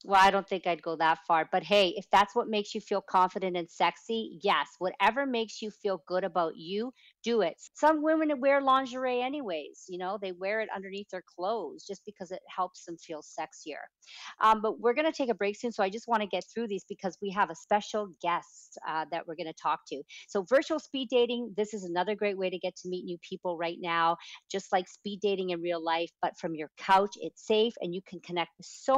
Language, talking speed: English, 240 wpm